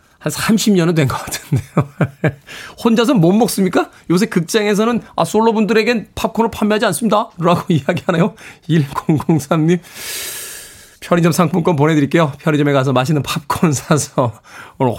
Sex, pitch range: male, 145-205 Hz